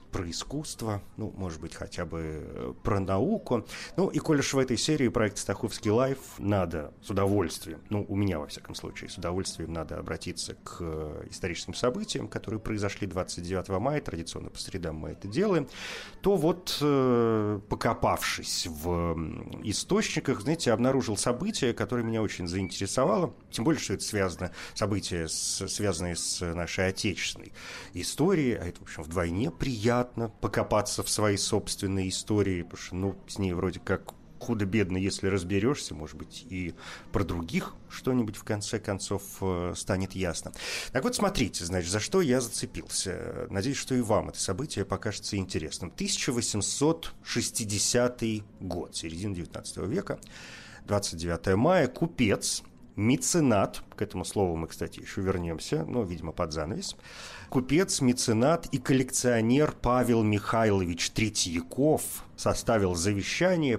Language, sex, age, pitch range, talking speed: Russian, male, 30-49, 90-120 Hz, 140 wpm